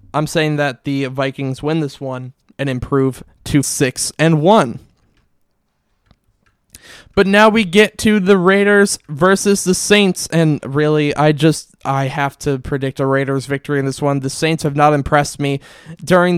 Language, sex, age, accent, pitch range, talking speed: English, male, 20-39, American, 140-170 Hz, 165 wpm